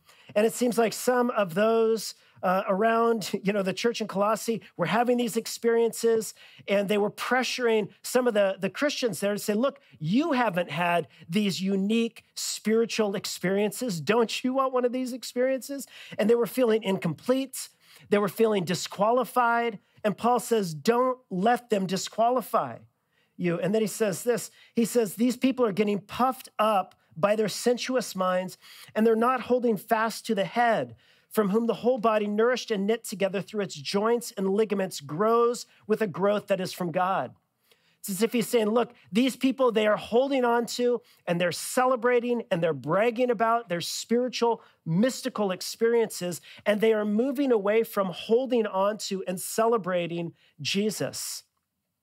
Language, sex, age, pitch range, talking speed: English, male, 40-59, 195-235 Hz, 170 wpm